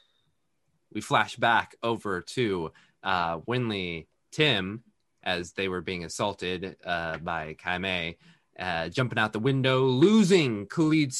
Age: 20-39